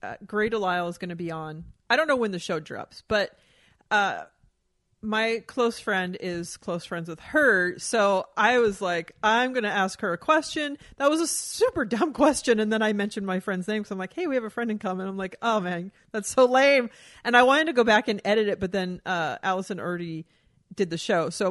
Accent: American